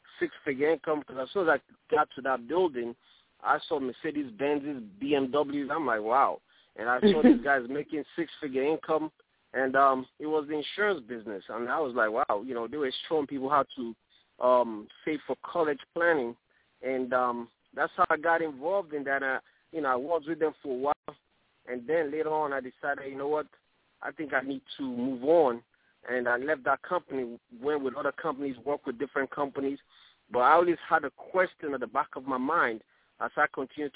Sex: male